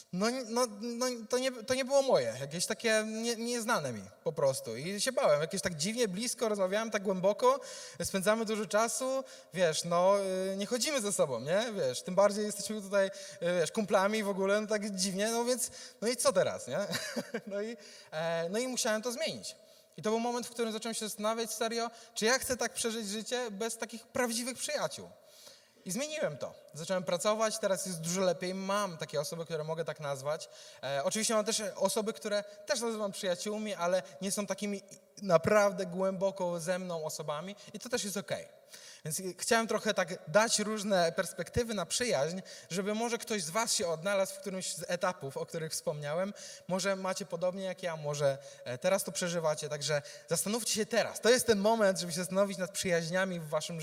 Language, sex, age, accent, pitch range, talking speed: Polish, male, 20-39, native, 180-230 Hz, 190 wpm